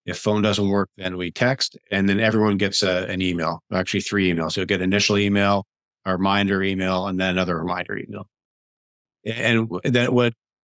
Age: 50-69